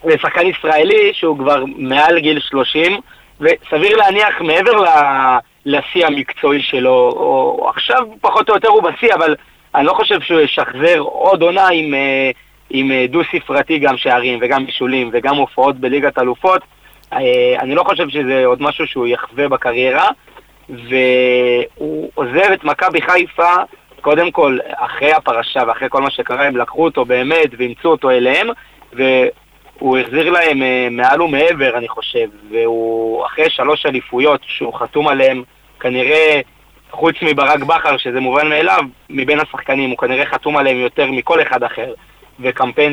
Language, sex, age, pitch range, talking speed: Hebrew, male, 30-49, 130-175 Hz, 145 wpm